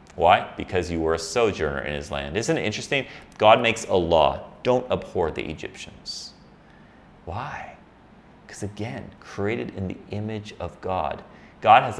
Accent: American